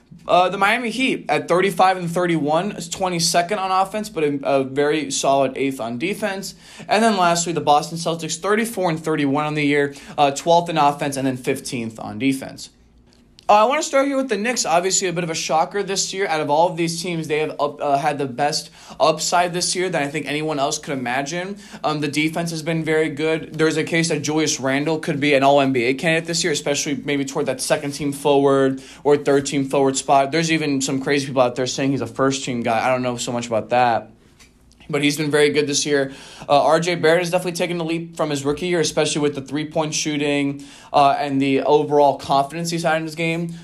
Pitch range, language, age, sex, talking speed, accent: 140-170 Hz, English, 20-39, male, 230 wpm, American